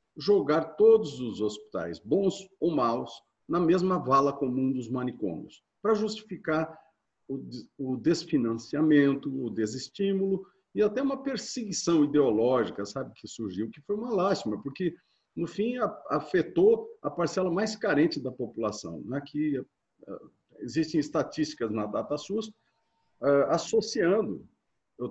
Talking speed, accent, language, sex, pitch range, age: 125 wpm, Brazilian, Portuguese, male, 130-200 Hz, 50-69